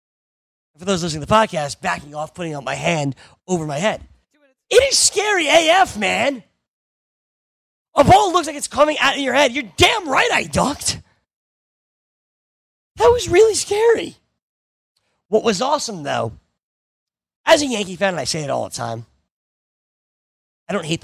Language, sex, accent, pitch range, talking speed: English, male, American, 150-220 Hz, 165 wpm